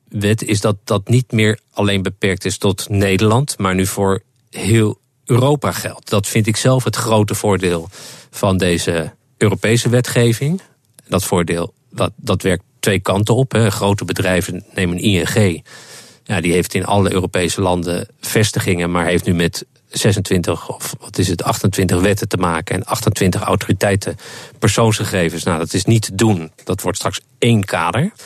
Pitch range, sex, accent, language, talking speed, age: 95-115 Hz, male, Dutch, Dutch, 165 wpm, 40-59